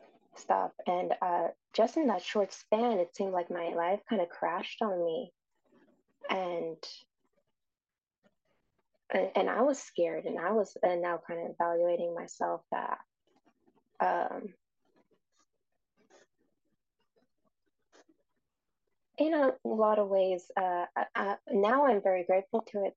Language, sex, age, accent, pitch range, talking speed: English, female, 20-39, American, 175-215 Hz, 130 wpm